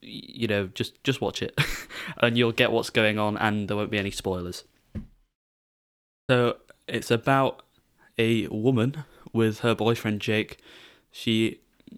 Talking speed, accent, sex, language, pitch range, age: 140 wpm, British, male, English, 105-115 Hz, 10-29